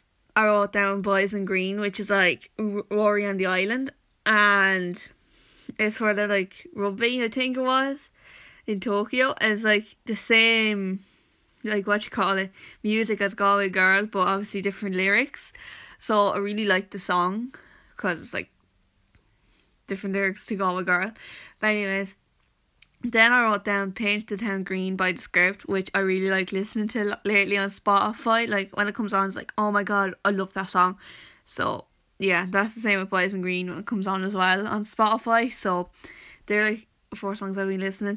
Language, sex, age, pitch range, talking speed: English, female, 10-29, 195-215 Hz, 185 wpm